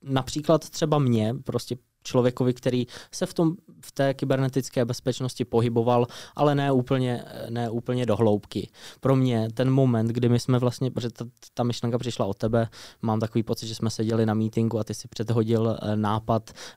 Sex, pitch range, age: male, 110-130 Hz, 20-39